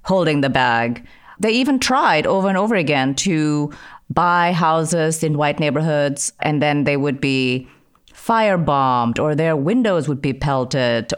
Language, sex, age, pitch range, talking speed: English, female, 30-49, 145-205 Hz, 150 wpm